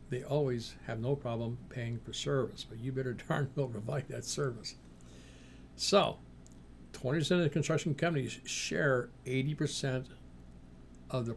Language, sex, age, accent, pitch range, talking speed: English, male, 60-79, American, 105-140 Hz, 135 wpm